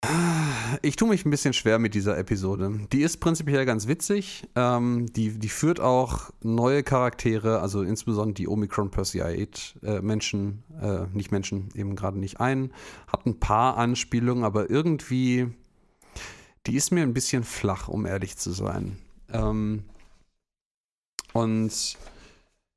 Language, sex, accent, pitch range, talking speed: German, male, German, 105-130 Hz, 130 wpm